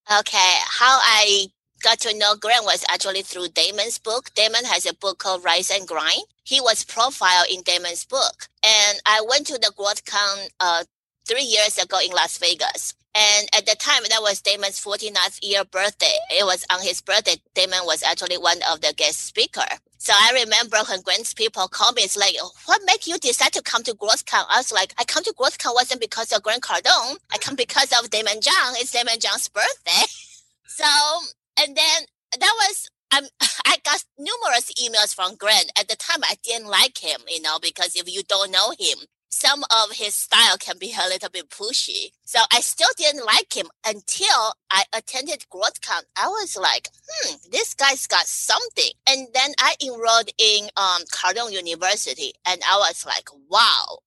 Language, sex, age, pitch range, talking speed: English, female, 30-49, 195-280 Hz, 190 wpm